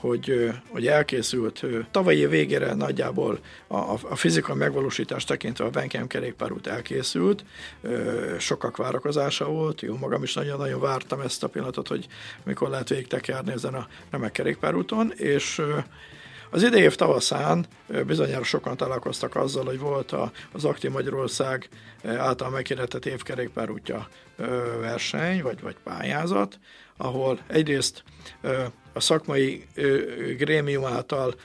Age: 60-79